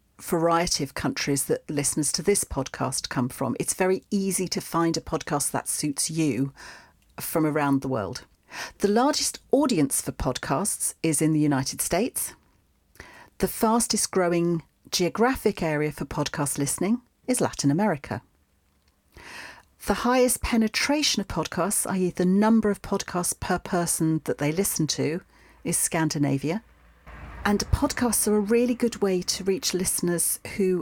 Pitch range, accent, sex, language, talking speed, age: 140-200 Hz, British, female, English, 145 wpm, 40-59